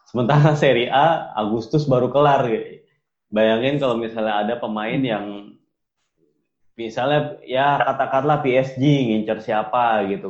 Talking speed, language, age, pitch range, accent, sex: 110 wpm, Indonesian, 20-39, 100-135 Hz, native, male